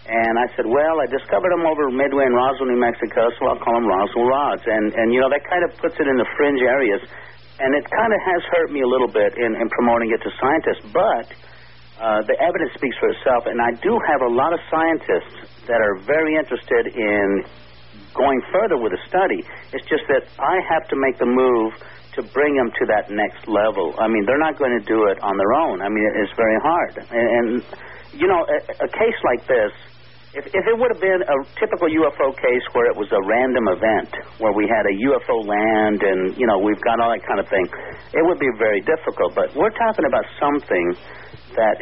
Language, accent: English, American